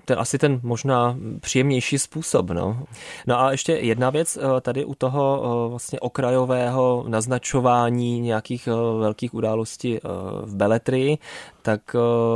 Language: Czech